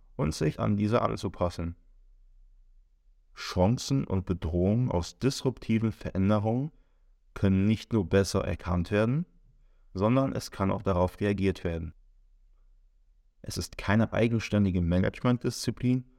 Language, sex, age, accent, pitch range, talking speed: German, male, 30-49, German, 90-105 Hz, 110 wpm